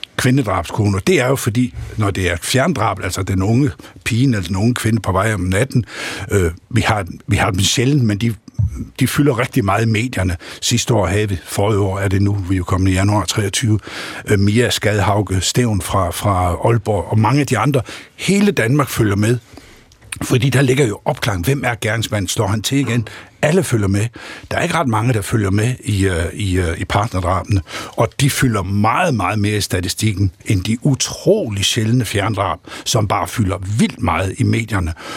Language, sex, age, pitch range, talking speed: Danish, male, 60-79, 100-125 Hz, 195 wpm